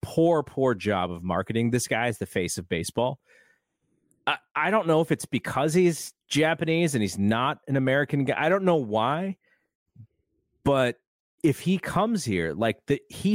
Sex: male